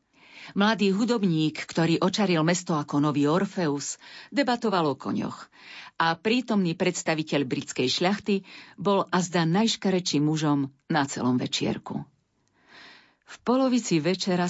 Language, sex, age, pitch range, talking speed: Slovak, female, 50-69, 150-200 Hz, 110 wpm